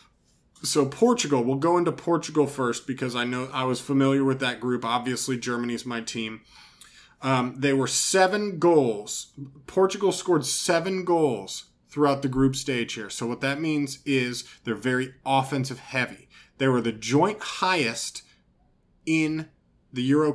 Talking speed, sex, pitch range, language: 150 wpm, male, 125-150 Hz, English